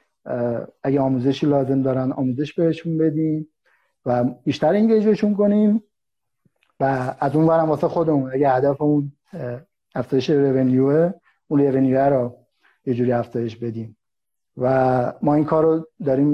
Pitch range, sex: 125-150 Hz, male